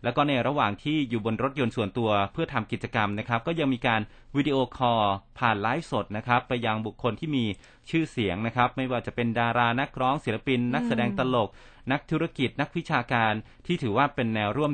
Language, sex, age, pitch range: Thai, male, 30-49, 110-130 Hz